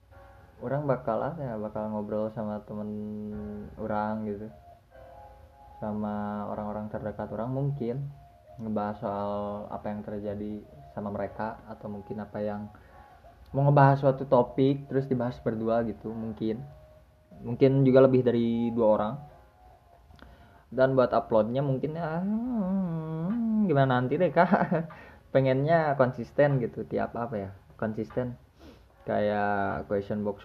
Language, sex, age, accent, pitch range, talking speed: Indonesian, male, 20-39, native, 100-130 Hz, 120 wpm